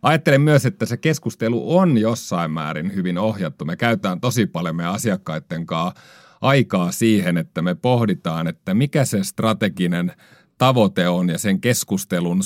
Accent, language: native, Finnish